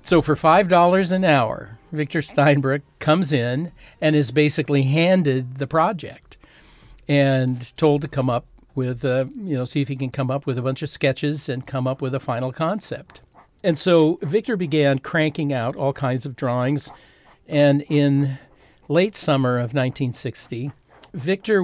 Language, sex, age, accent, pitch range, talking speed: English, male, 60-79, American, 135-155 Hz, 160 wpm